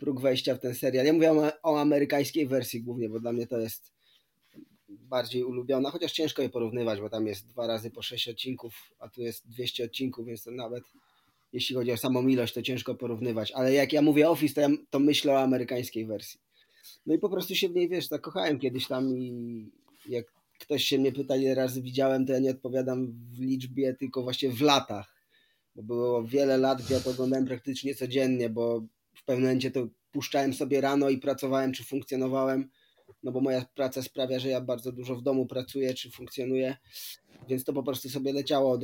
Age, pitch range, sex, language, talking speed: 20-39, 125-145 Hz, male, Polish, 200 wpm